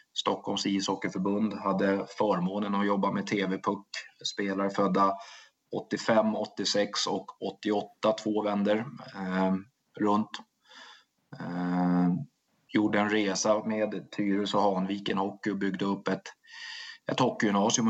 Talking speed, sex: 105 wpm, male